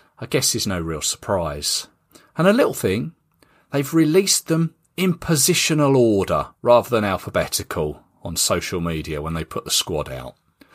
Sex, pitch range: male, 115-165 Hz